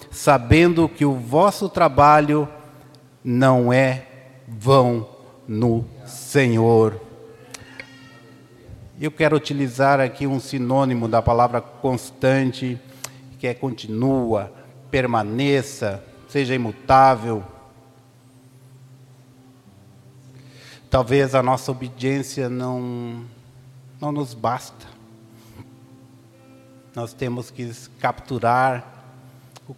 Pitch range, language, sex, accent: 125-150 Hz, Portuguese, male, Brazilian